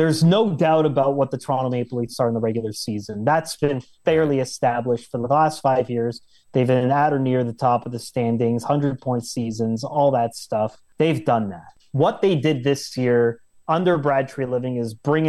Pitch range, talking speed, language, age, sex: 125-150 Hz, 200 wpm, English, 30-49, male